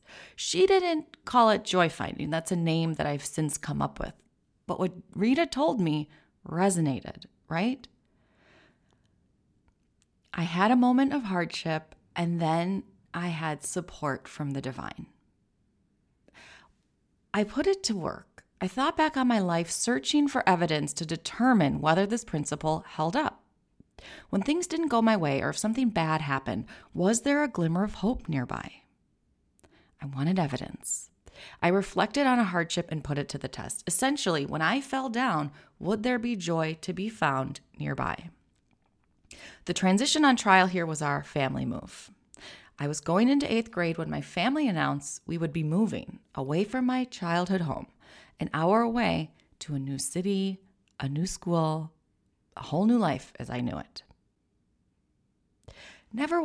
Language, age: English, 30-49